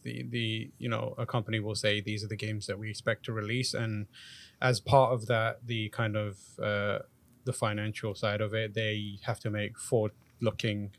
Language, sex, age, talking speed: English, male, 20-39, 200 wpm